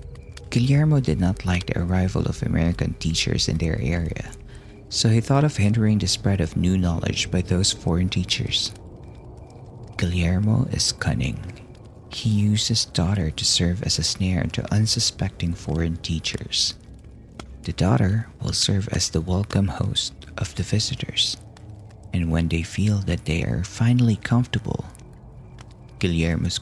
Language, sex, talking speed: Filipino, male, 140 wpm